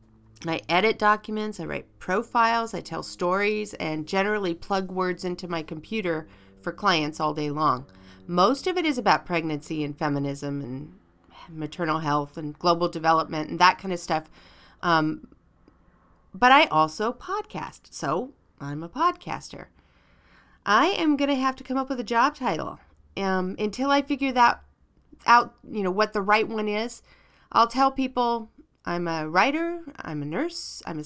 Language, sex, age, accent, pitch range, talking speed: English, female, 40-59, American, 165-235 Hz, 160 wpm